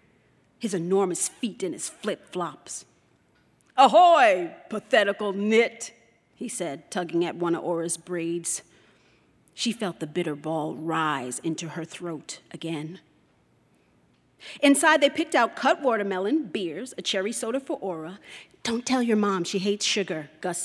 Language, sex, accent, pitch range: English, female, American, 175-240 Hz